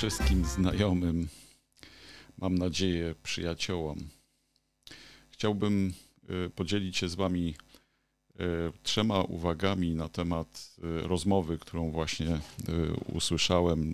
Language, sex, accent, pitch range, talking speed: Polish, male, native, 80-95 Hz, 80 wpm